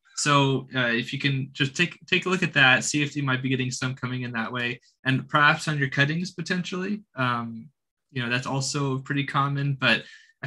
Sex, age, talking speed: male, 20-39, 220 wpm